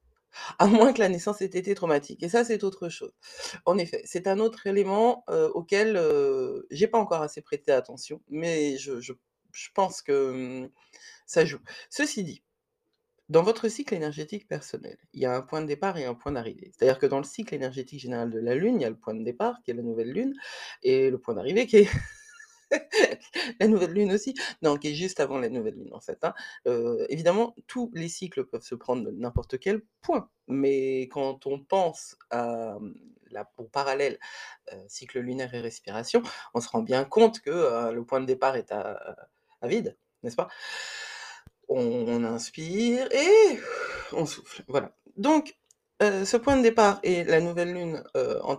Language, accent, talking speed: French, French, 195 wpm